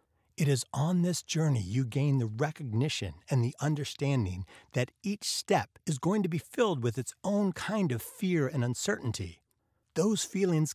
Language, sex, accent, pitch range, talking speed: English, male, American, 110-155 Hz, 165 wpm